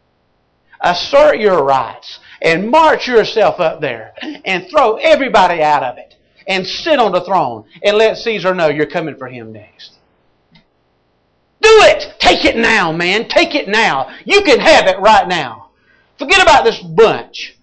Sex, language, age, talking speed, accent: male, English, 40-59, 160 wpm, American